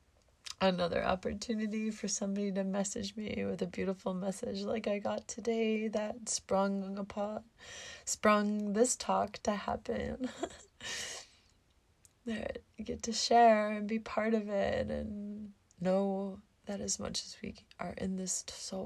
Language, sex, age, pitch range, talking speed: English, female, 20-39, 185-230 Hz, 140 wpm